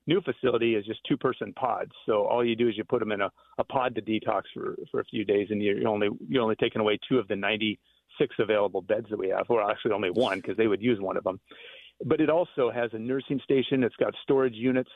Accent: American